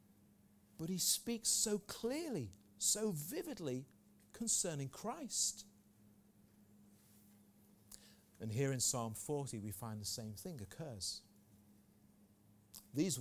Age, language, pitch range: 40-59, English, 105-125 Hz